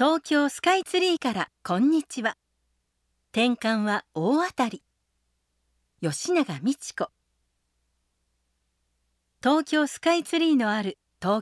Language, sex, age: Japanese, female, 50-69